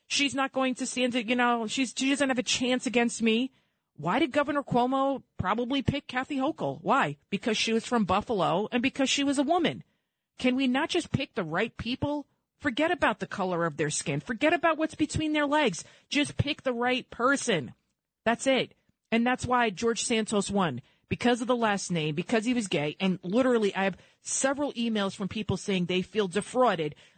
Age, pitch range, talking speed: 40-59, 190-255 Hz, 200 wpm